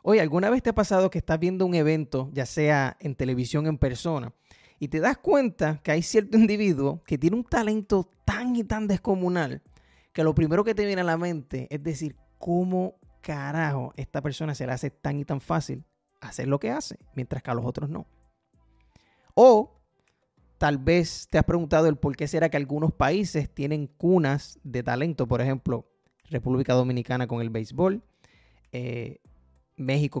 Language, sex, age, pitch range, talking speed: Spanish, male, 30-49, 130-180 Hz, 180 wpm